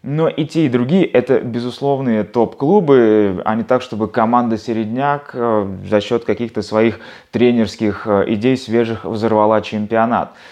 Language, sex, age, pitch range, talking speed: Russian, male, 20-39, 115-150 Hz, 130 wpm